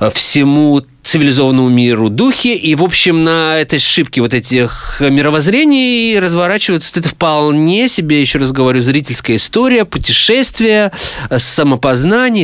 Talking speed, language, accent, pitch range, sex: 115 wpm, Russian, native, 115-165 Hz, male